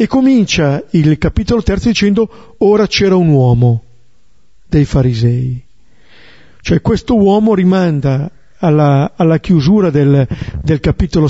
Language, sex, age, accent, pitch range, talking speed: Italian, male, 50-69, native, 135-165 Hz, 115 wpm